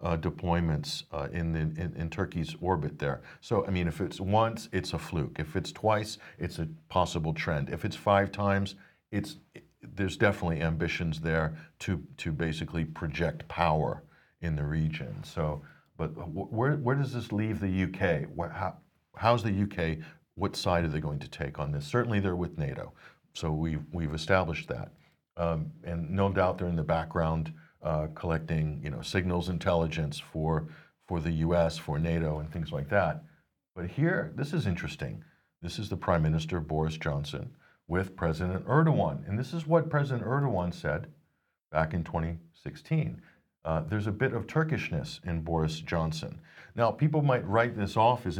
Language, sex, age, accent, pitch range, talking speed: English, male, 50-69, American, 80-100 Hz, 175 wpm